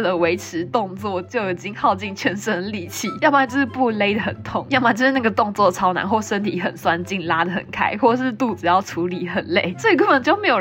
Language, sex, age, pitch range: Chinese, female, 20-39, 185-260 Hz